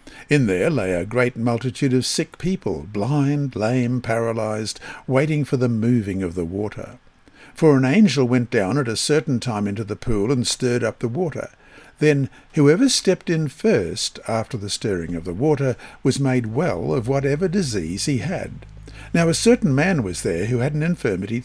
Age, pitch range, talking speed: 60-79, 110-150 Hz, 180 wpm